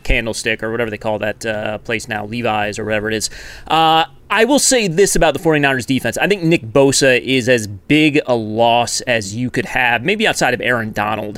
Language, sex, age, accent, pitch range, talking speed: English, male, 30-49, American, 120-170 Hz, 215 wpm